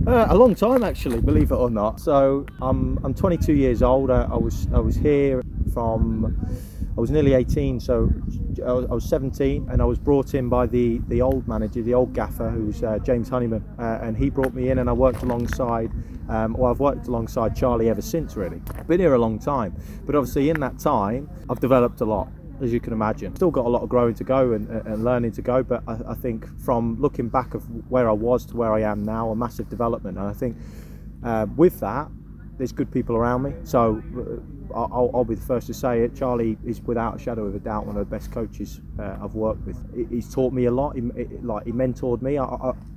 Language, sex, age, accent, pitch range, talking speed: English, male, 30-49, British, 105-125 Hz, 235 wpm